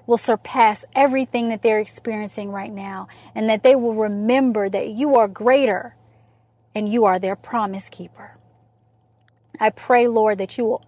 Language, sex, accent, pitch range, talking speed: English, female, American, 210-255 Hz, 160 wpm